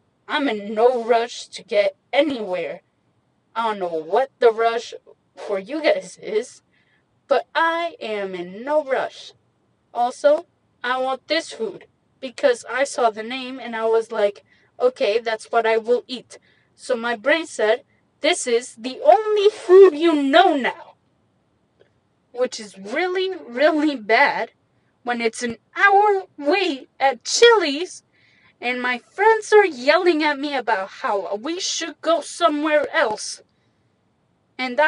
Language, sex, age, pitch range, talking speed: English, female, 20-39, 240-345 Hz, 140 wpm